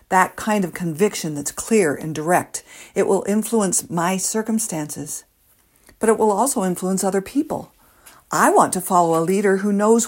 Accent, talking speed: American, 165 wpm